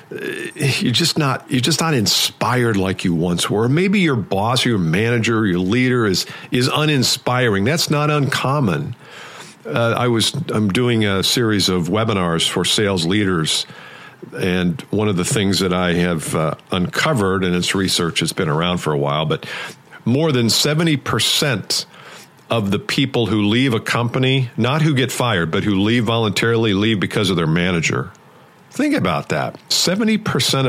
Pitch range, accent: 95-120 Hz, American